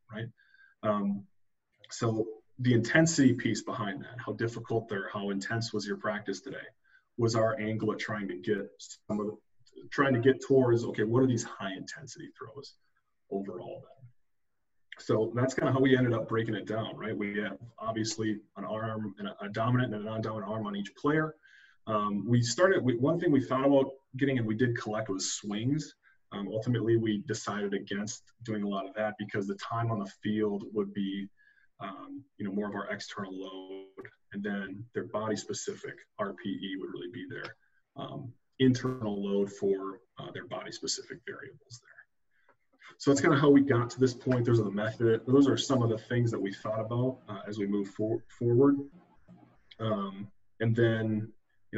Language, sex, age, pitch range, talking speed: English, male, 30-49, 105-125 Hz, 185 wpm